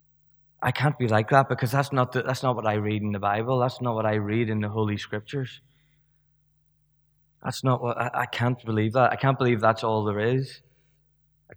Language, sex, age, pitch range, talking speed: English, male, 20-39, 110-135 Hz, 220 wpm